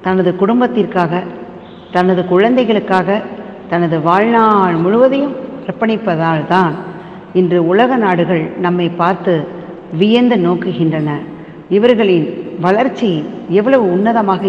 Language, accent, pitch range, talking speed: Tamil, native, 170-205 Hz, 80 wpm